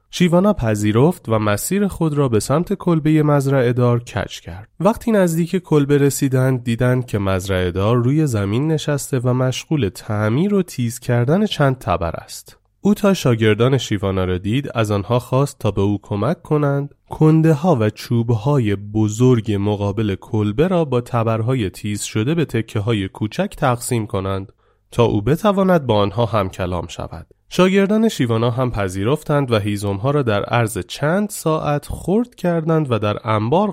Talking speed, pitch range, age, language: 155 wpm, 100-150 Hz, 30-49, Persian